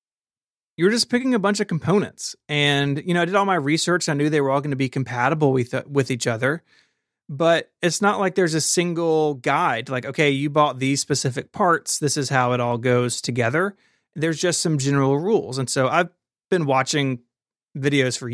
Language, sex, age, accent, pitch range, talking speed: English, male, 30-49, American, 125-155 Hz, 205 wpm